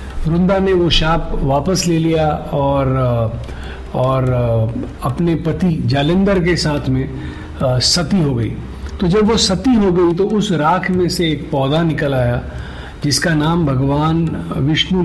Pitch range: 130-180 Hz